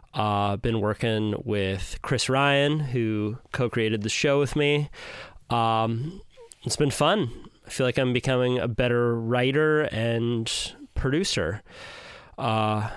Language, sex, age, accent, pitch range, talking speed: English, male, 20-39, American, 110-140 Hz, 130 wpm